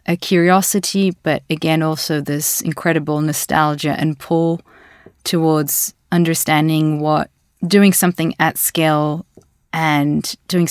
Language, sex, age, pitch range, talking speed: English, female, 20-39, 150-165 Hz, 105 wpm